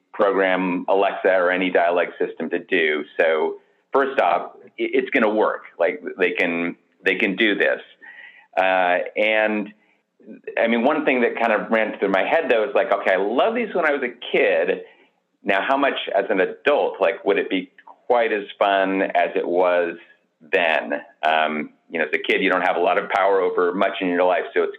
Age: 40-59